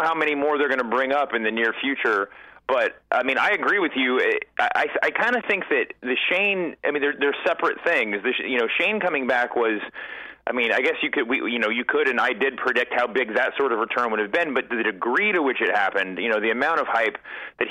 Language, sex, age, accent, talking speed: English, male, 30-49, American, 270 wpm